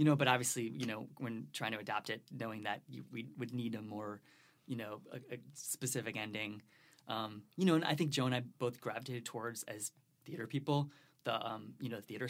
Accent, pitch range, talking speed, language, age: American, 115-145 Hz, 225 wpm, English, 20-39